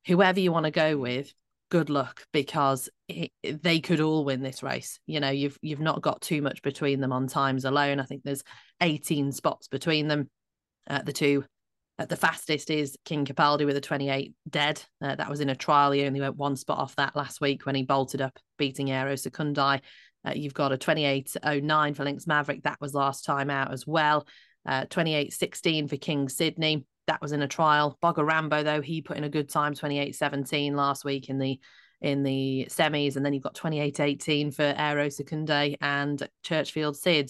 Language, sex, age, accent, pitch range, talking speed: English, female, 30-49, British, 140-155 Hz, 200 wpm